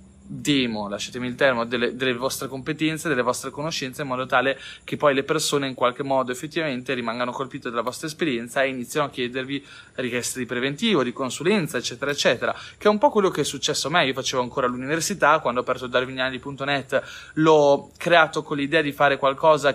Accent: native